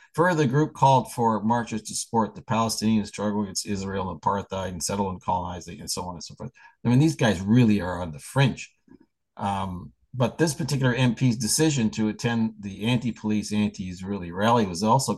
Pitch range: 95-115 Hz